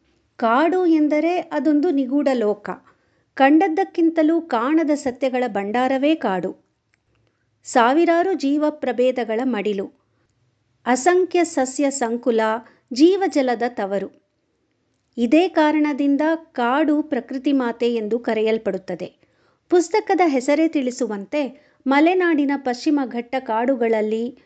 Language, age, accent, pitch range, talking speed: Kannada, 50-69, native, 225-300 Hz, 80 wpm